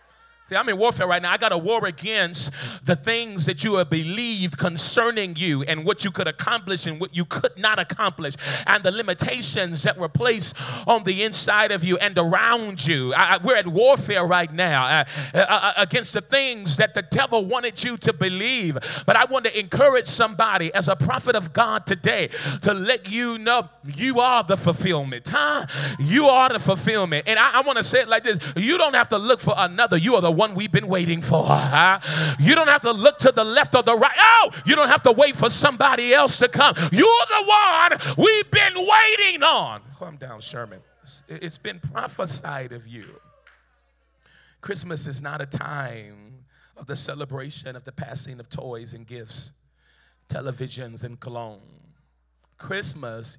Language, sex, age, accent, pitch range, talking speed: English, male, 30-49, American, 145-235 Hz, 185 wpm